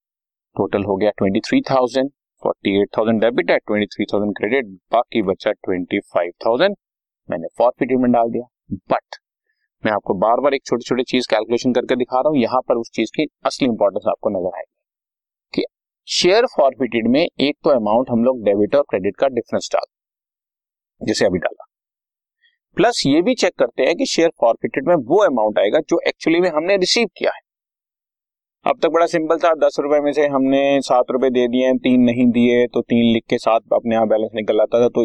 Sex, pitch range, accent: male, 110-145 Hz, native